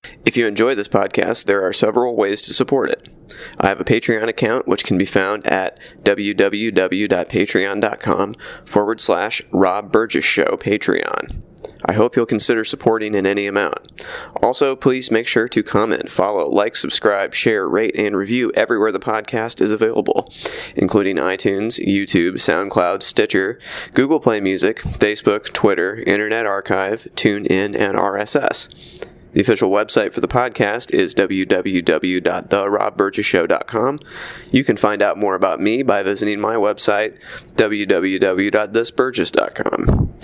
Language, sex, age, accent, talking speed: English, male, 20-39, American, 135 wpm